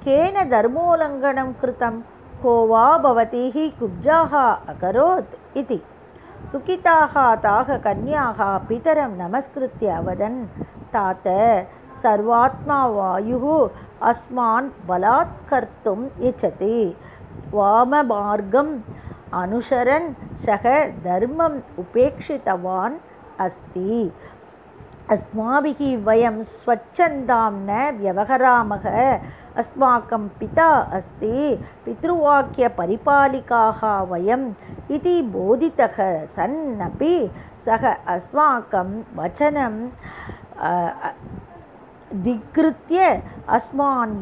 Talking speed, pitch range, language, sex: 35 wpm, 210-280 Hz, Tamil, female